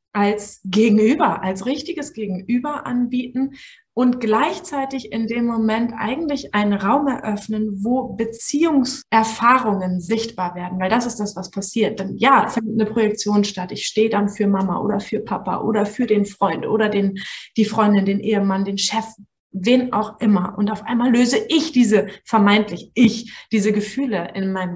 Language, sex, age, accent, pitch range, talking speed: German, female, 20-39, German, 210-250 Hz, 160 wpm